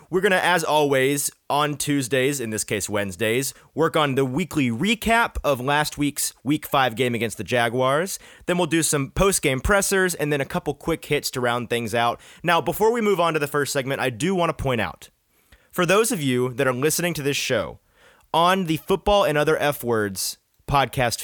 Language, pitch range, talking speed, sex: English, 130-175 Hz, 205 wpm, male